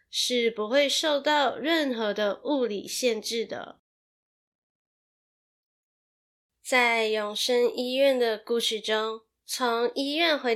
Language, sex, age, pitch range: Chinese, female, 10-29, 215-250 Hz